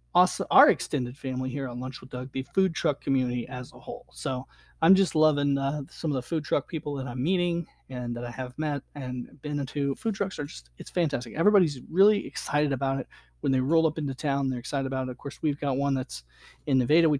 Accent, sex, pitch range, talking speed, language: American, male, 130-165 Hz, 235 wpm, English